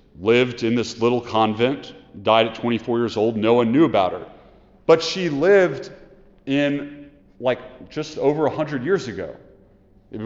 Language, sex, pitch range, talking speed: English, male, 110-140 Hz, 150 wpm